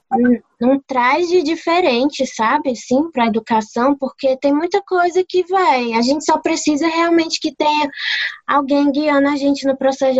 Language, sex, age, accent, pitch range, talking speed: Portuguese, female, 10-29, Brazilian, 235-285 Hz, 170 wpm